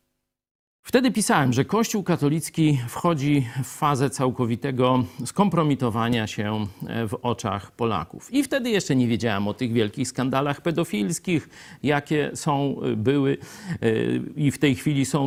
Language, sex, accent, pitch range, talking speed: Polish, male, native, 115-155 Hz, 125 wpm